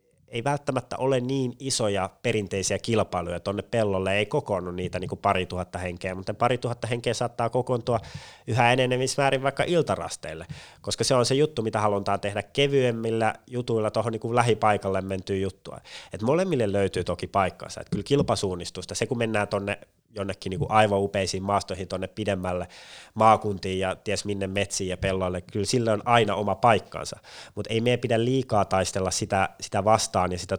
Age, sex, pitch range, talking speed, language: 30-49, male, 95-120 Hz, 170 wpm, Finnish